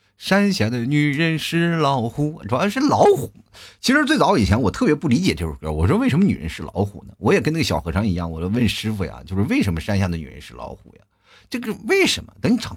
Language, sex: Chinese, male